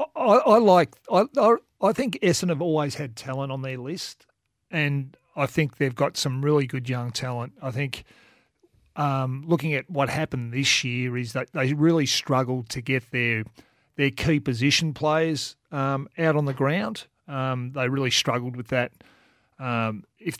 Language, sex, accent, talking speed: English, male, Australian, 170 wpm